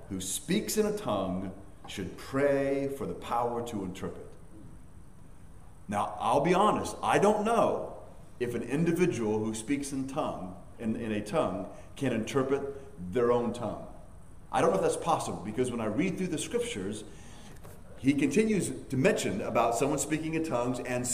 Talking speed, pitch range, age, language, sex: 165 wpm, 110-160 Hz, 40-59, English, male